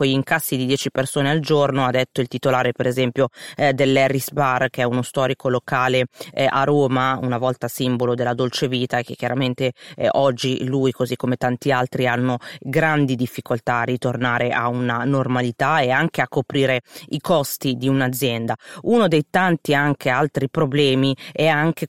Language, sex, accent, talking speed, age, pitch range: Italian, female, native, 175 wpm, 30-49, 130-155 Hz